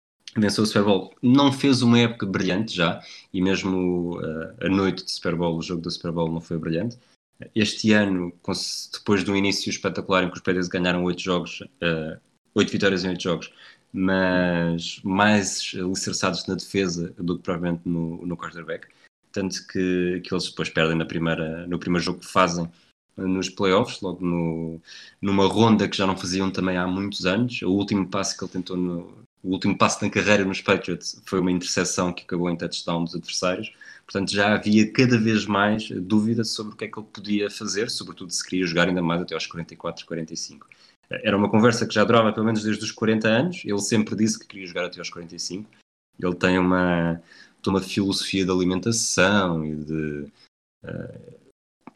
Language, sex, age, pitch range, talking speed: Portuguese, male, 20-39, 85-105 Hz, 180 wpm